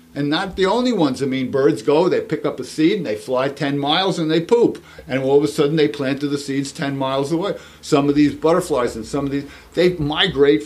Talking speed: 250 wpm